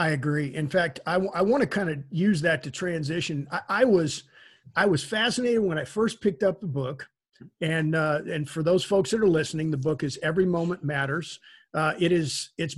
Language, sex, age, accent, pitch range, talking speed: English, male, 50-69, American, 155-195 Hz, 215 wpm